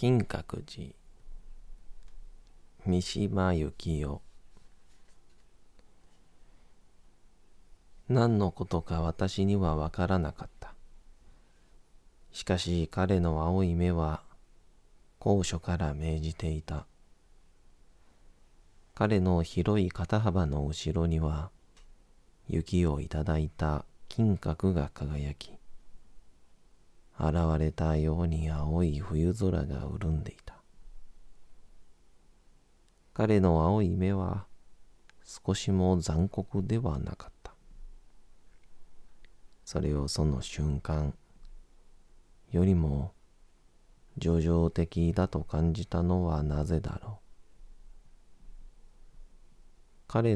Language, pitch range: Japanese, 75-90 Hz